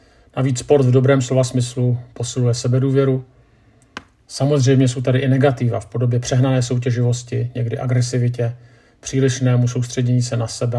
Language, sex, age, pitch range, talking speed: Czech, male, 50-69, 120-140 Hz, 135 wpm